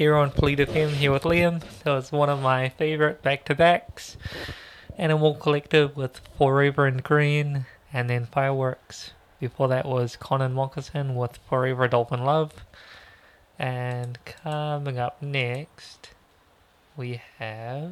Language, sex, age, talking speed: English, male, 20-39, 125 wpm